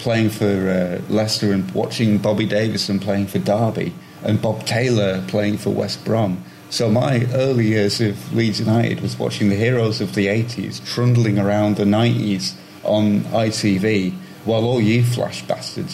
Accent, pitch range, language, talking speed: British, 95-120 Hz, English, 160 wpm